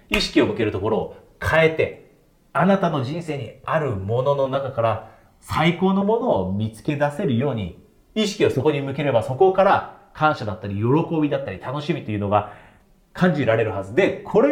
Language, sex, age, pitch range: Japanese, male, 40-59, 115-175 Hz